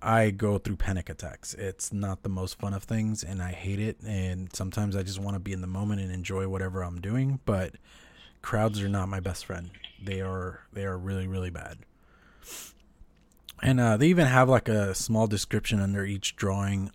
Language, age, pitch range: English, 20-39, 95-115 Hz